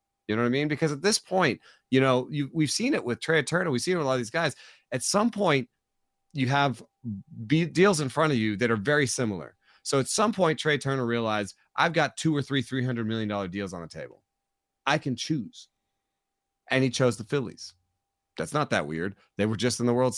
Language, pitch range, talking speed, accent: English, 105-140 Hz, 230 wpm, American